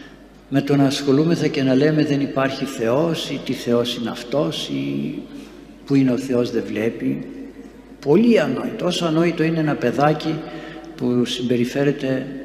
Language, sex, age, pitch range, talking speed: Greek, male, 60-79, 120-150 Hz, 150 wpm